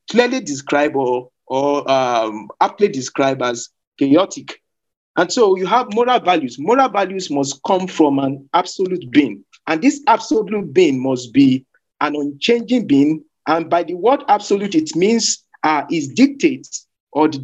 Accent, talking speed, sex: Nigerian, 150 wpm, male